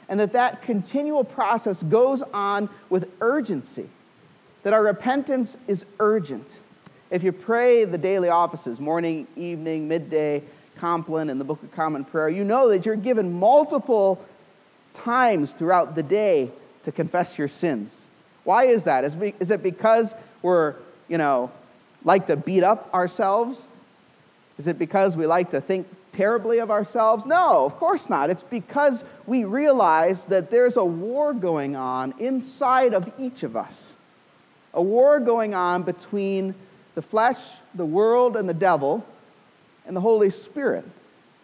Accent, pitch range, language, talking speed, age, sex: American, 175-245 Hz, English, 150 wpm, 40-59, male